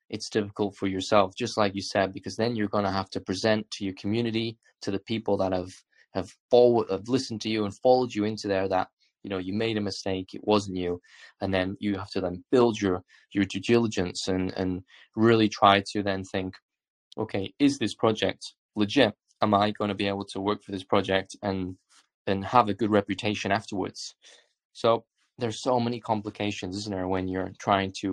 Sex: male